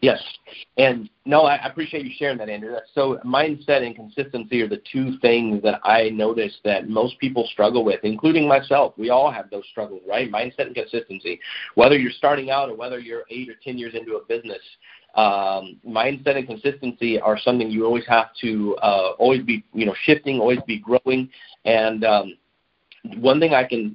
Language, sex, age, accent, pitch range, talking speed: English, male, 40-59, American, 115-145 Hz, 190 wpm